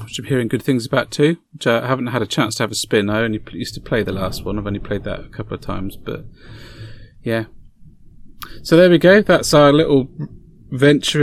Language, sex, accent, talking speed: English, male, British, 230 wpm